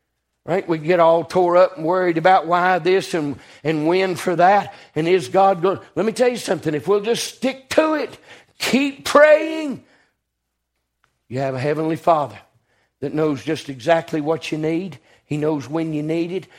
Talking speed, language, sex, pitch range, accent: 190 wpm, English, male, 140-240 Hz, American